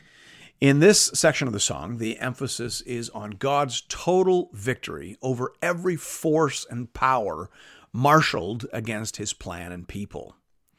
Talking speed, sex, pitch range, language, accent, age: 135 wpm, male, 120-170 Hz, English, American, 50-69